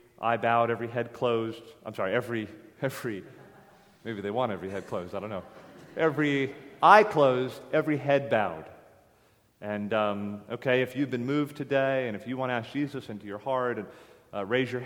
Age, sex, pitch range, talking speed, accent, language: 30-49, male, 110-140 Hz, 185 wpm, American, English